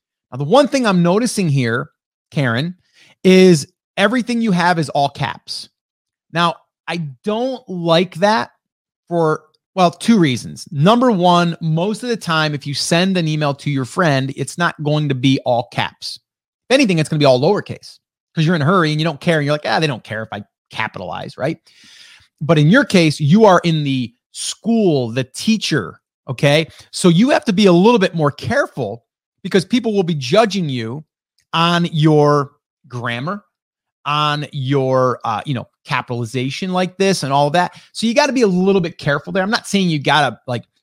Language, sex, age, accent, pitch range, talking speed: English, male, 30-49, American, 140-185 Hz, 195 wpm